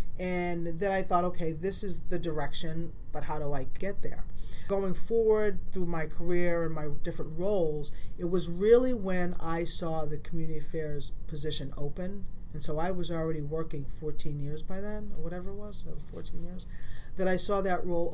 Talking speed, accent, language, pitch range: 185 wpm, American, English, 150-190 Hz